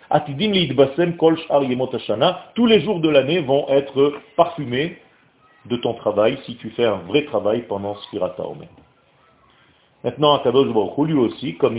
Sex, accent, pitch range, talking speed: male, French, 115-170 Hz, 130 wpm